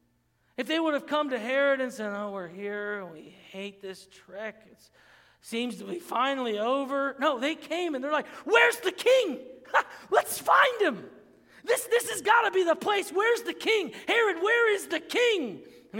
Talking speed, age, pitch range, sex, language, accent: 195 wpm, 40-59, 255-320 Hz, male, English, American